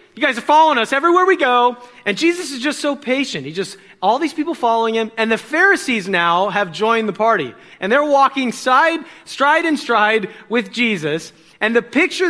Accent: American